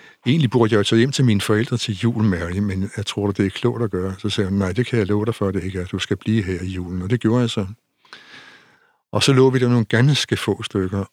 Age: 60-79